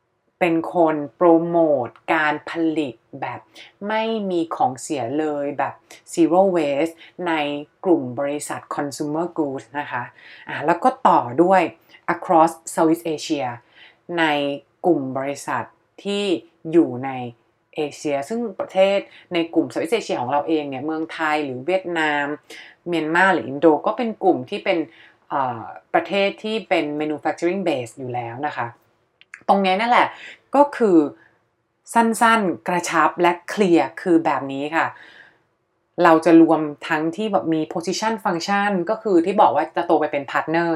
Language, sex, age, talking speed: English, female, 30-49, 30 wpm